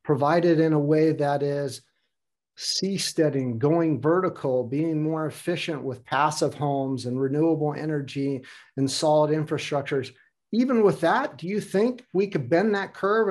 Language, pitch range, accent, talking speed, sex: English, 140-170 Hz, American, 145 wpm, male